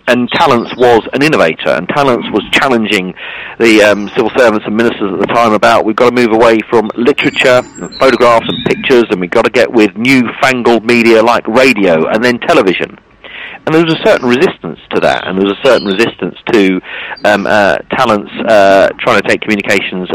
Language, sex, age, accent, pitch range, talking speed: English, male, 40-59, British, 100-125 Hz, 195 wpm